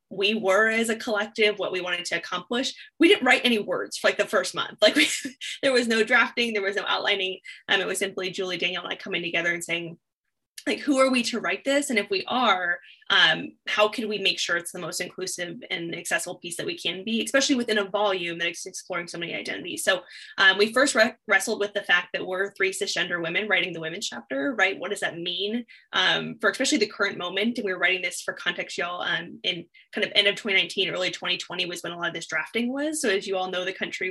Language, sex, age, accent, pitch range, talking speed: English, female, 20-39, American, 180-225 Hz, 245 wpm